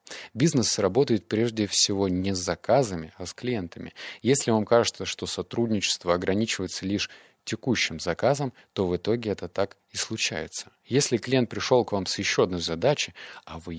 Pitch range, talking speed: 90-115 Hz, 160 wpm